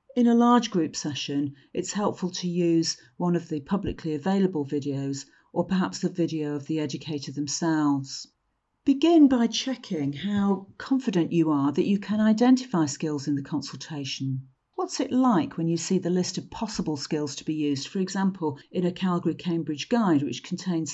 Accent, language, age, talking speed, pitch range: British, English, 40-59, 175 wpm, 150-195 Hz